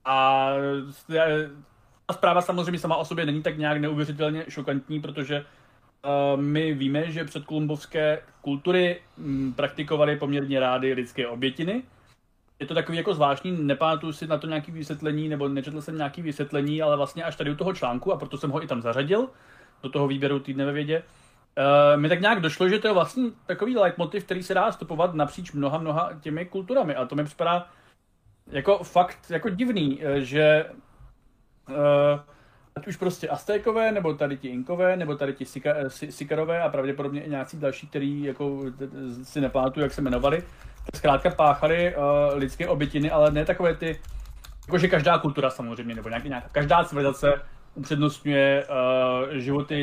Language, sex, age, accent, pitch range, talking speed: Czech, male, 30-49, native, 135-160 Hz, 160 wpm